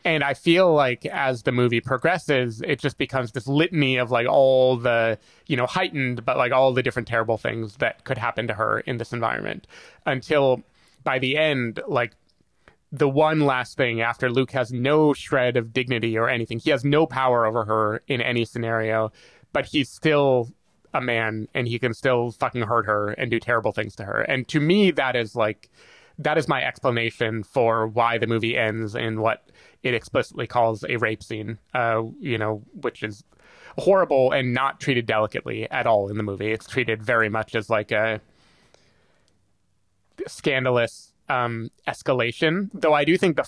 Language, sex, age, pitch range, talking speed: English, male, 20-39, 115-140 Hz, 185 wpm